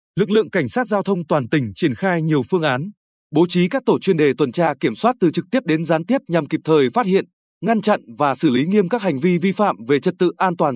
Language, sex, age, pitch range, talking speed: Vietnamese, male, 20-39, 155-195 Hz, 280 wpm